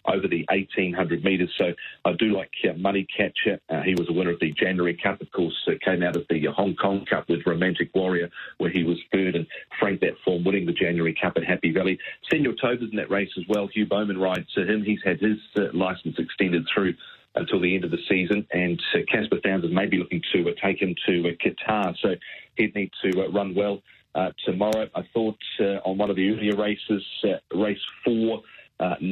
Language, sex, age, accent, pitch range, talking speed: English, male, 40-59, Australian, 90-100 Hz, 225 wpm